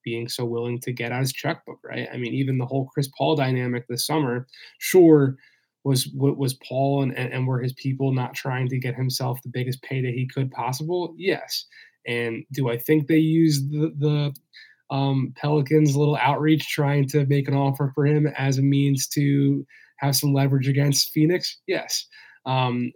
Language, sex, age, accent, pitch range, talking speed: English, male, 20-39, American, 130-150 Hz, 190 wpm